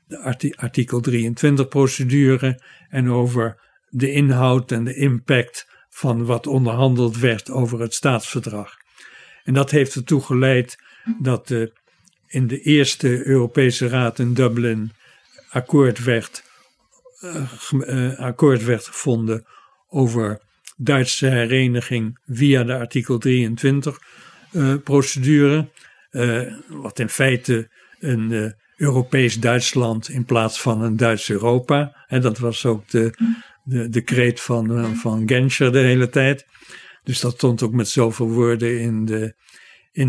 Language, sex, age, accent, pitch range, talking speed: Dutch, male, 60-79, Dutch, 120-135 Hz, 125 wpm